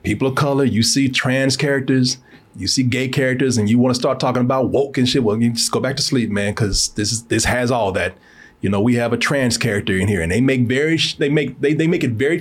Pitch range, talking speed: 115-135 Hz, 270 wpm